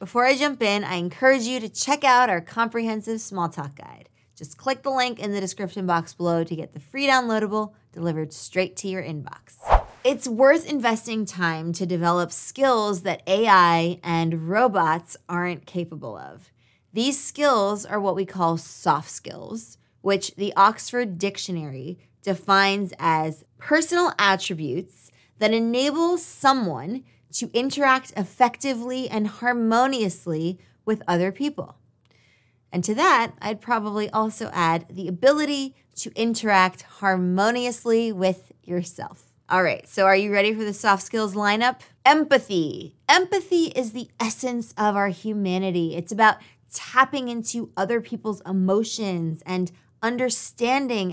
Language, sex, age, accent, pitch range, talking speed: English, female, 20-39, American, 175-240 Hz, 135 wpm